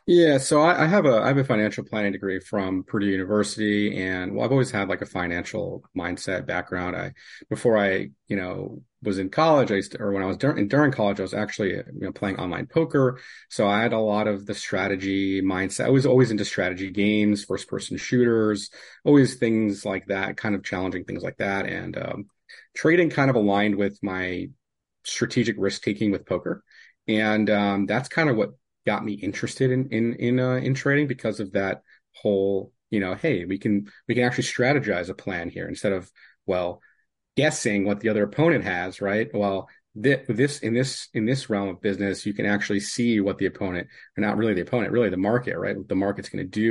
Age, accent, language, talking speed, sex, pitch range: 40-59, American, English, 210 wpm, male, 100-125 Hz